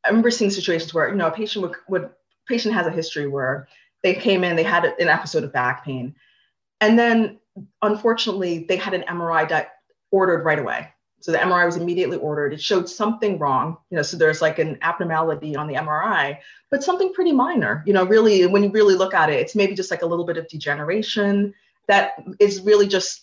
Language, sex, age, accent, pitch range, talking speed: English, female, 30-49, American, 160-195 Hz, 215 wpm